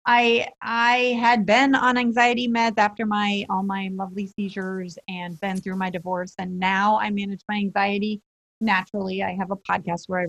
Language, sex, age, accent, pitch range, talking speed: English, female, 30-49, American, 185-225 Hz, 180 wpm